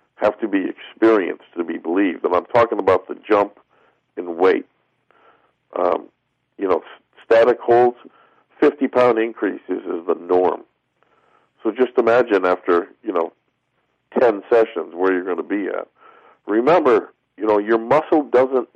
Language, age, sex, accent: English, 50-69, male, American